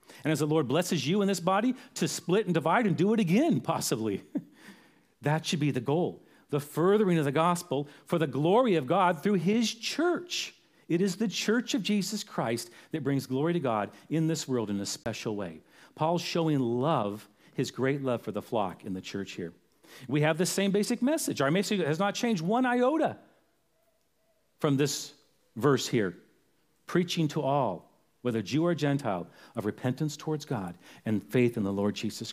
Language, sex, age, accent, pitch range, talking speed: English, male, 40-59, American, 140-205 Hz, 190 wpm